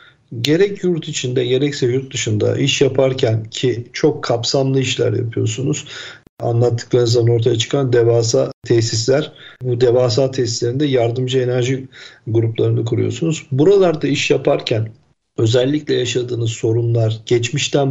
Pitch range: 115-135 Hz